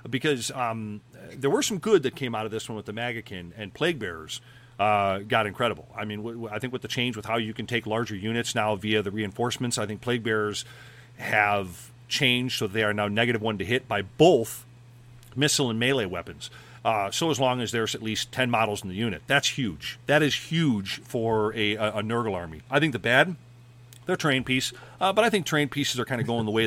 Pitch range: 105-125 Hz